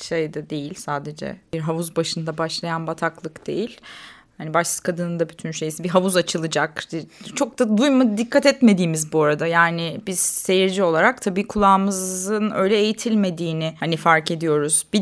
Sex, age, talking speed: female, 30-49, 150 wpm